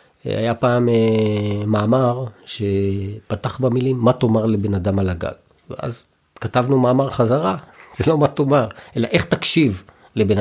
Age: 40-59